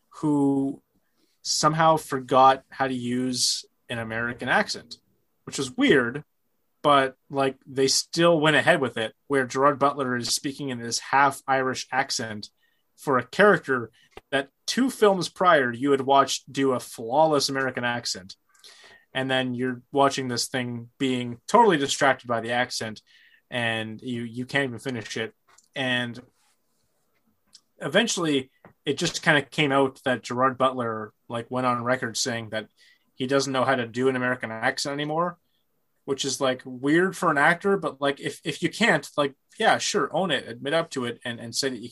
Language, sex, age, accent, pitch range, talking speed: English, male, 20-39, American, 125-150 Hz, 170 wpm